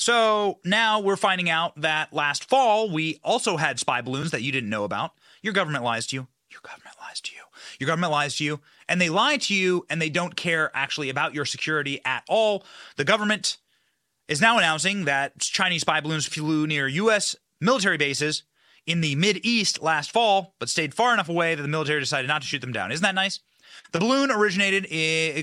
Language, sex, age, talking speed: English, male, 30-49, 205 wpm